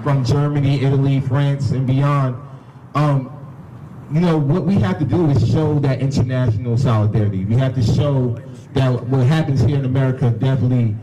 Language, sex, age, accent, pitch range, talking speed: English, male, 30-49, American, 120-145 Hz, 165 wpm